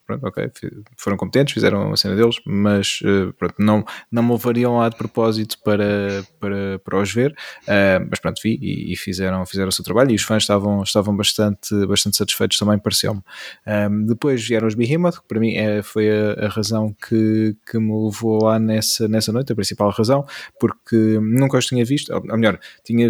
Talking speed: 190 wpm